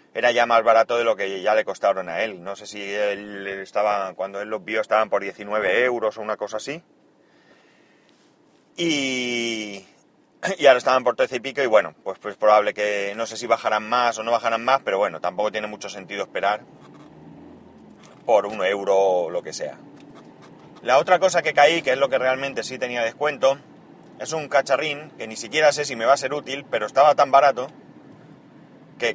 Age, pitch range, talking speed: 30-49, 105-150 Hz, 200 wpm